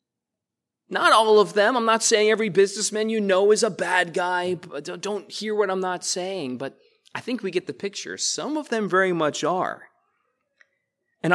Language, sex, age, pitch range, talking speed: English, male, 30-49, 150-220 Hz, 185 wpm